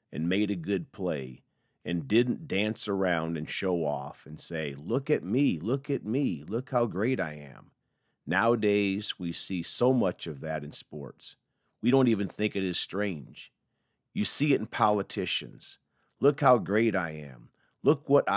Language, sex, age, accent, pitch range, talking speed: English, male, 50-69, American, 80-115 Hz, 175 wpm